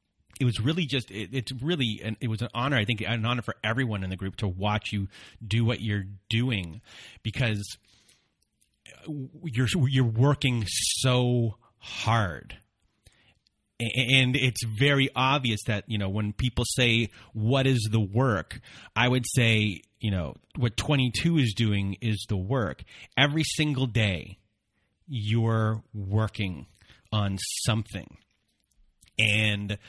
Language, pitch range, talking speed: English, 105-125 Hz, 135 wpm